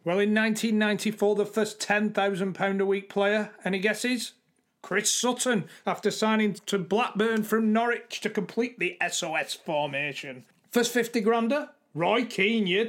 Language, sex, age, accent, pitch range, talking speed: English, male, 30-49, British, 180-225 Hz, 130 wpm